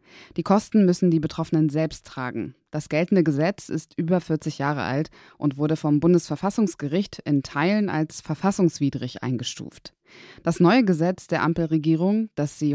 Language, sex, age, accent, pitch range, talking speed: German, female, 20-39, German, 150-180 Hz, 145 wpm